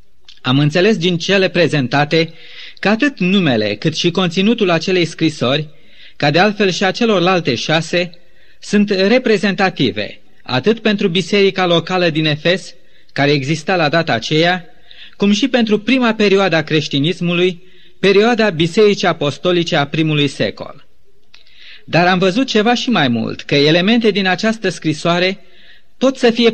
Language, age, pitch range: Romanian, 30-49, 160-205 Hz